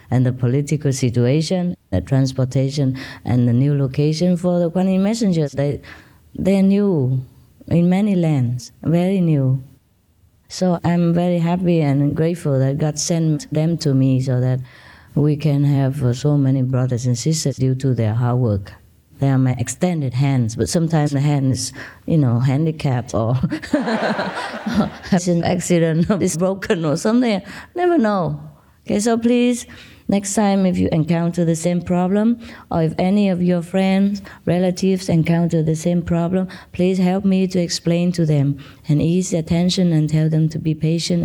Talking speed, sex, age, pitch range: 165 wpm, female, 20-39, 130-180 Hz